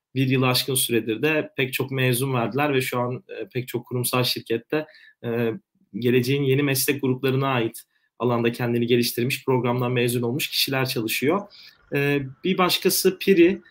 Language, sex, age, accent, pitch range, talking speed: Turkish, male, 40-59, native, 120-145 Hz, 140 wpm